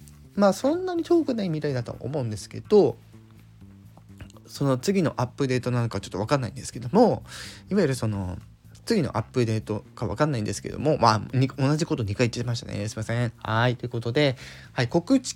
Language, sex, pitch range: Japanese, male, 105-160 Hz